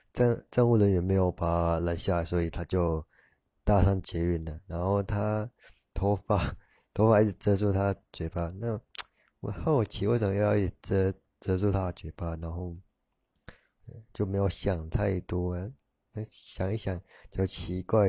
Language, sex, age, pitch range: Chinese, male, 20-39, 85-100 Hz